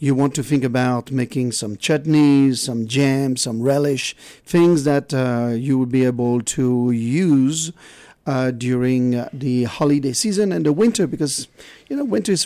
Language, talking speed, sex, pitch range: English, 170 wpm, male, 125-150 Hz